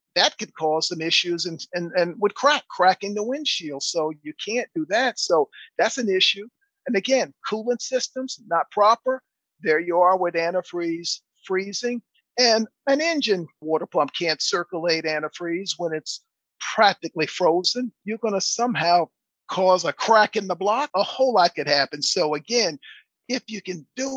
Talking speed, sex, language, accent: 165 wpm, male, English, American